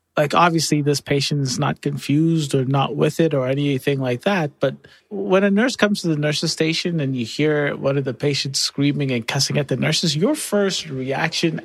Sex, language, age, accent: male, English, 30-49, American